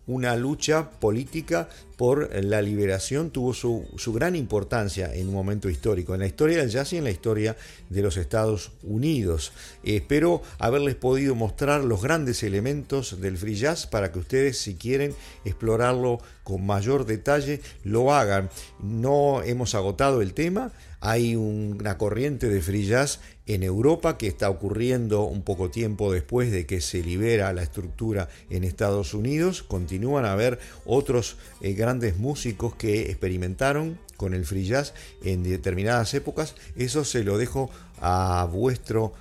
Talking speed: 155 wpm